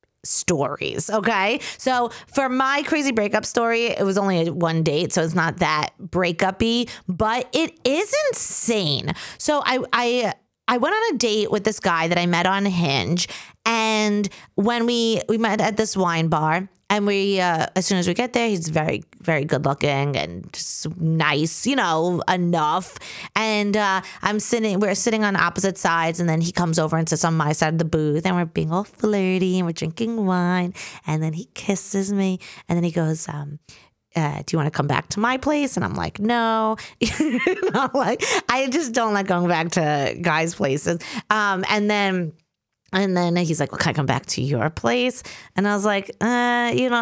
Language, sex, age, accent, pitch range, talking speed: English, female, 30-49, American, 170-225 Hz, 200 wpm